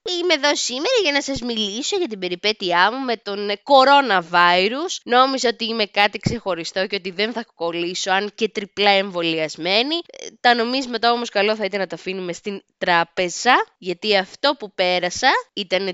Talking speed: 175 wpm